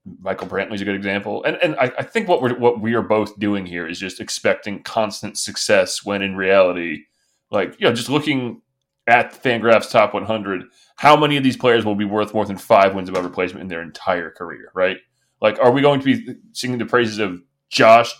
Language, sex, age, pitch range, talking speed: English, male, 20-39, 100-125 Hz, 220 wpm